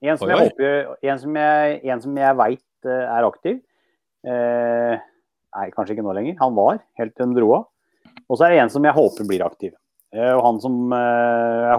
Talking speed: 210 wpm